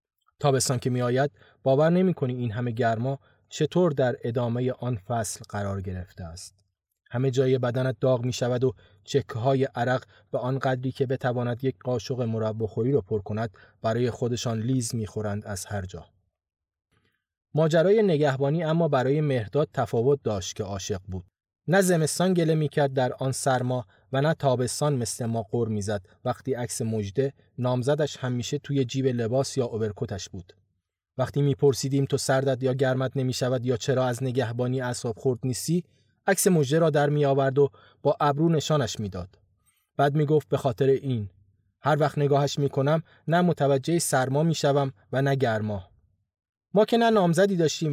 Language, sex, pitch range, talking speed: Persian, male, 110-145 Hz, 160 wpm